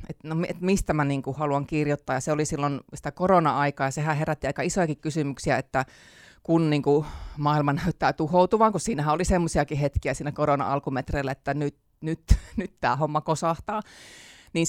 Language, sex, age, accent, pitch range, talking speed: Finnish, female, 30-49, native, 145-175 Hz, 170 wpm